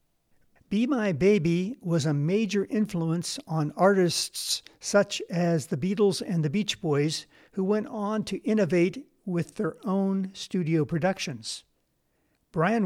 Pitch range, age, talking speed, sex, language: 160-200 Hz, 50-69, 130 wpm, male, English